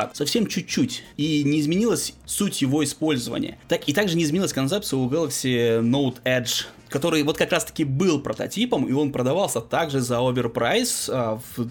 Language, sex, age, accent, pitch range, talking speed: Russian, male, 20-39, native, 125-160 Hz, 155 wpm